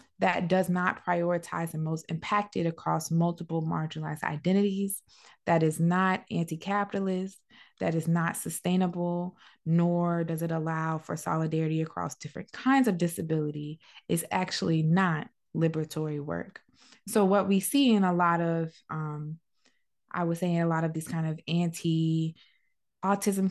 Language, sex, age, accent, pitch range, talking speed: English, female, 20-39, American, 160-190 Hz, 140 wpm